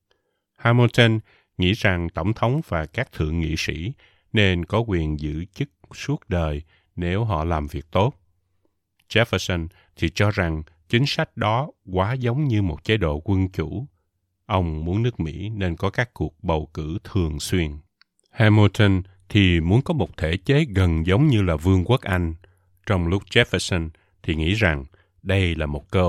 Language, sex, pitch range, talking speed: Vietnamese, male, 80-105 Hz, 170 wpm